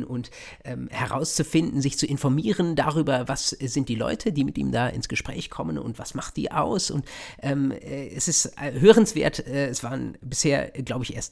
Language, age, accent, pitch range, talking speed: German, 50-69, German, 120-150 Hz, 190 wpm